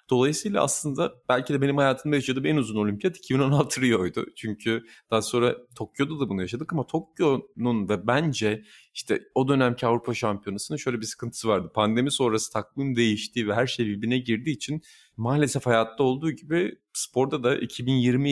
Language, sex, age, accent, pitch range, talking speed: Turkish, male, 30-49, native, 105-130 Hz, 160 wpm